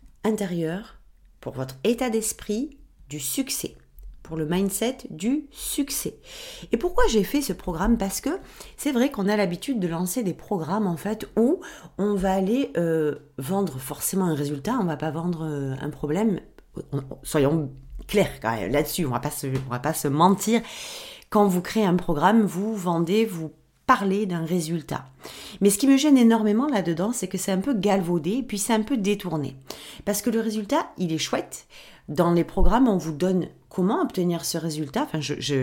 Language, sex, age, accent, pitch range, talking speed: French, female, 40-59, French, 160-220 Hz, 185 wpm